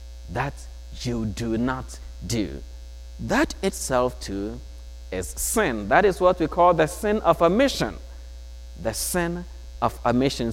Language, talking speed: English, 130 wpm